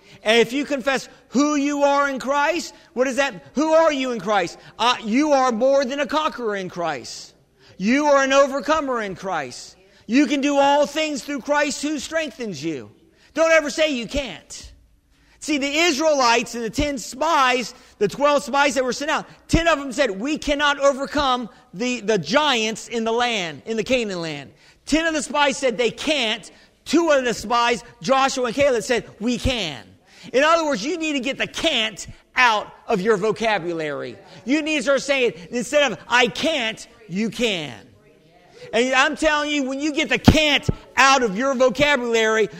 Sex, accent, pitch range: male, American, 230-290 Hz